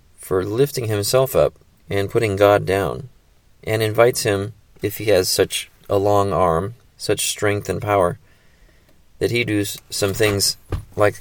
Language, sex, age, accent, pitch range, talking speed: English, male, 30-49, American, 95-110 Hz, 150 wpm